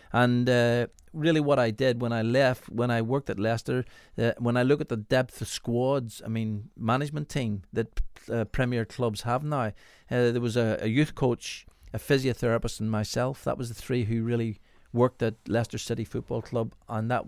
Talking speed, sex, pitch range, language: 200 wpm, male, 110-135 Hz, English